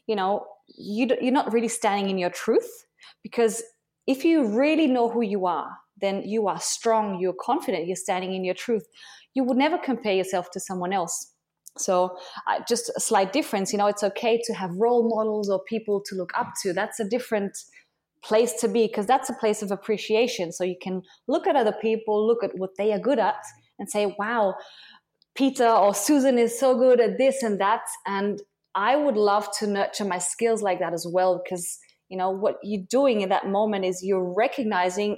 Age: 20-39